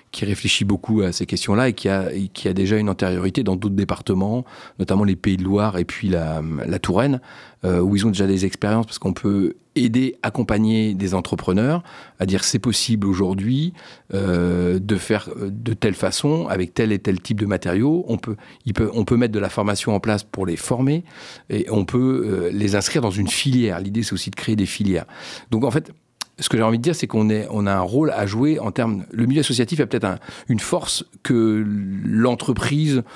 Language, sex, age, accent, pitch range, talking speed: French, male, 40-59, French, 95-125 Hz, 220 wpm